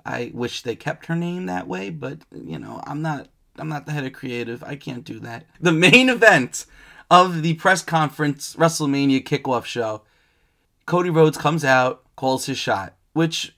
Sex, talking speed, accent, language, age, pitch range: male, 180 wpm, American, English, 30-49, 140-195 Hz